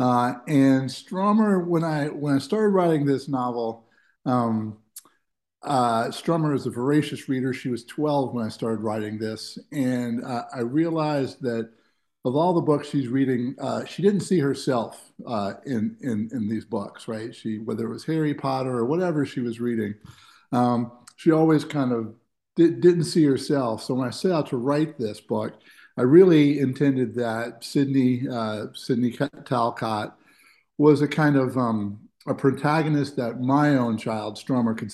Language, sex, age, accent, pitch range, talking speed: English, male, 50-69, American, 115-150 Hz, 170 wpm